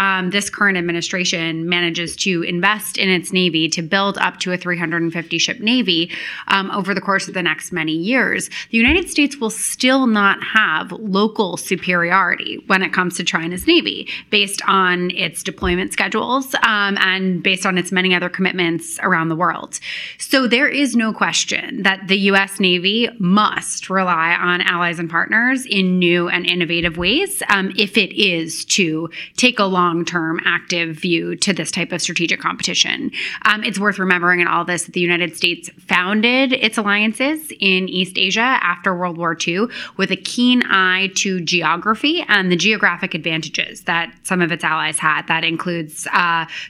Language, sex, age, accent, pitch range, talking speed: English, female, 20-39, American, 175-205 Hz, 170 wpm